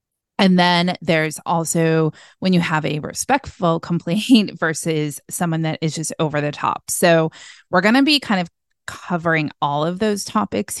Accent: American